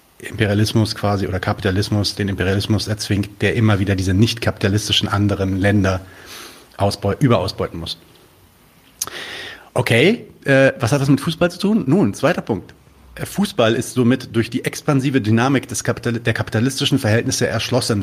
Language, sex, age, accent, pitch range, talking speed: German, male, 40-59, German, 100-125 Hz, 130 wpm